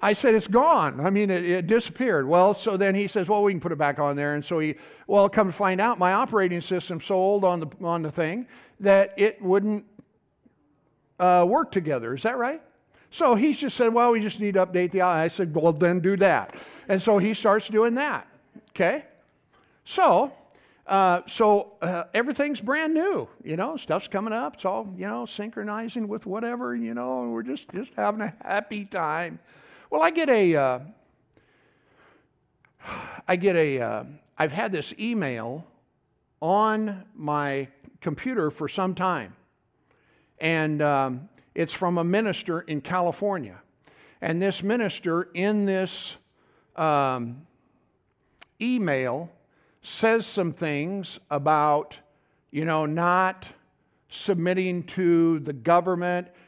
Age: 50-69